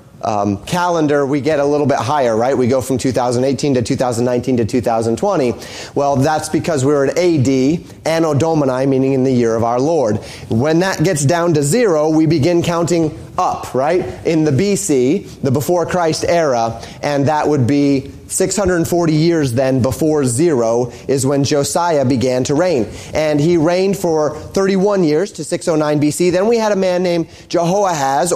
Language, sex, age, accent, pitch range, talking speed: English, male, 30-49, American, 135-175 Hz, 170 wpm